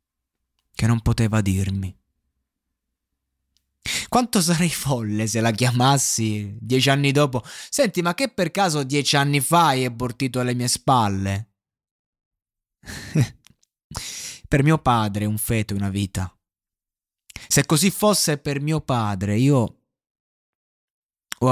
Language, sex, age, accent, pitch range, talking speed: Italian, male, 20-39, native, 95-135 Hz, 115 wpm